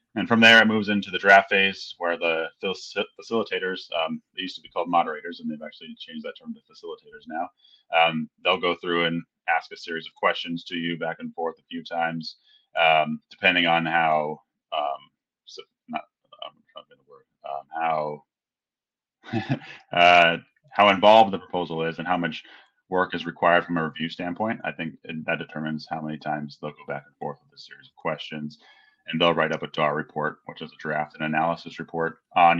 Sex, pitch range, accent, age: male, 80-95 Hz, American, 30-49